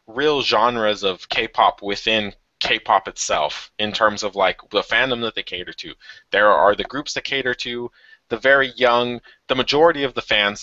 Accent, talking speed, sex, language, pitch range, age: American, 180 wpm, male, English, 95-125 Hz, 20-39